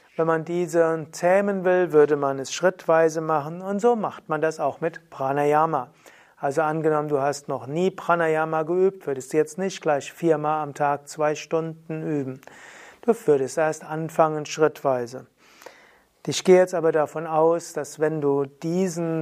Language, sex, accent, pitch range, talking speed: German, male, German, 145-175 Hz, 160 wpm